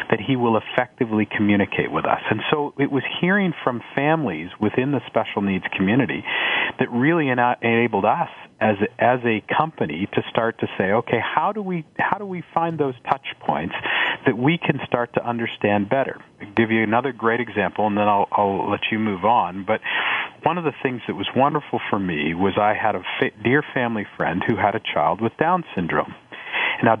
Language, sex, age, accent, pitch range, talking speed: English, male, 40-59, American, 105-135 Hz, 200 wpm